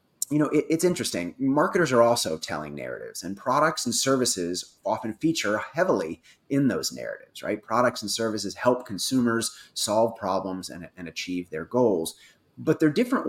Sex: male